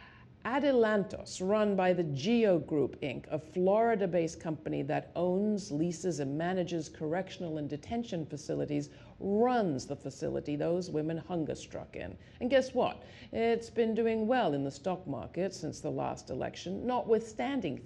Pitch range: 165-250 Hz